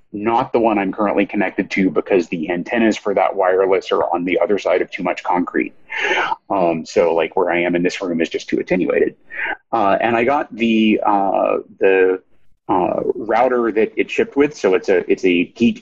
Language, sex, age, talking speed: English, male, 30-49, 205 wpm